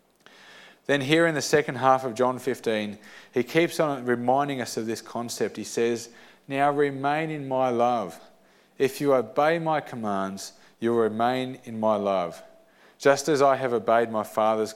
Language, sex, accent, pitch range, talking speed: English, male, Australian, 110-145 Hz, 170 wpm